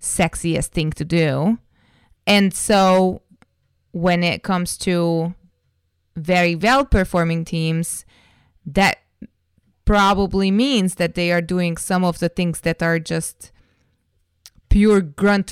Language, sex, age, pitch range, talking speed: English, female, 20-39, 150-180 Hz, 110 wpm